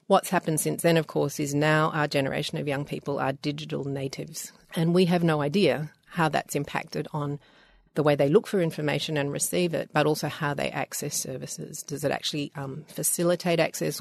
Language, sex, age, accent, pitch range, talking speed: English, female, 40-59, Australian, 150-175 Hz, 195 wpm